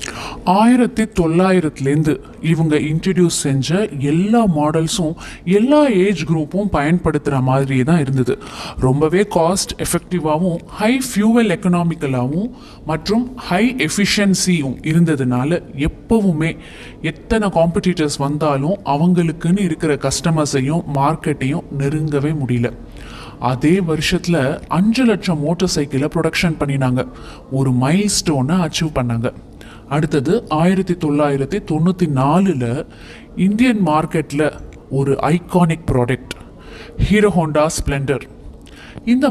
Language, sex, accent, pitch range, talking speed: Tamil, male, native, 140-185 Hz, 85 wpm